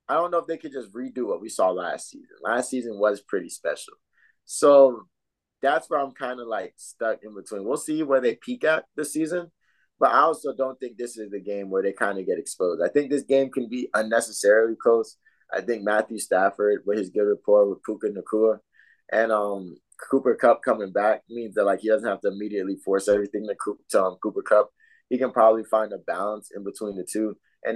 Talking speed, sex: 225 wpm, male